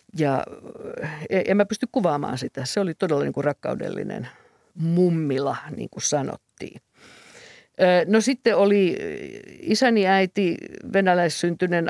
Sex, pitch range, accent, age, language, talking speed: female, 150-195 Hz, native, 50-69, Finnish, 105 wpm